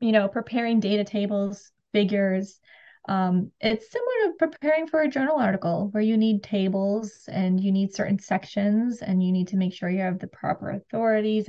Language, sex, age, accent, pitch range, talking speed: English, female, 20-39, American, 195-220 Hz, 185 wpm